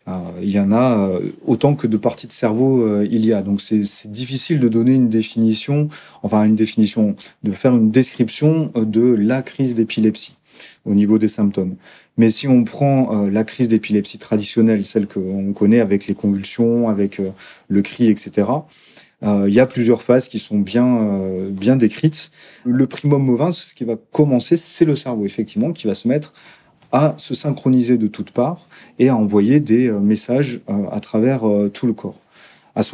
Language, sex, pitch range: French, male, 105-130 Hz